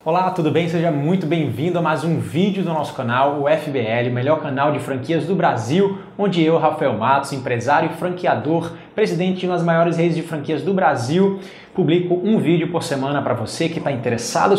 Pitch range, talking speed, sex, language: 140-175 Hz, 190 wpm, male, Portuguese